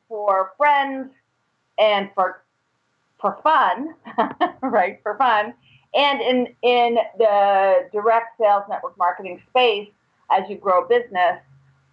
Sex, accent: female, American